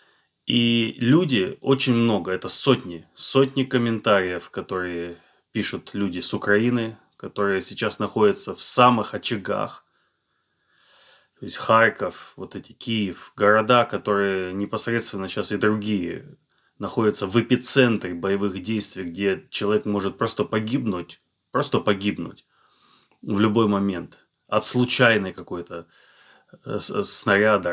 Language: Russian